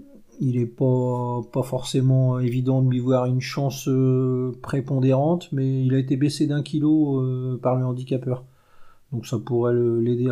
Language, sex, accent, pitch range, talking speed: French, male, French, 120-130 Hz, 170 wpm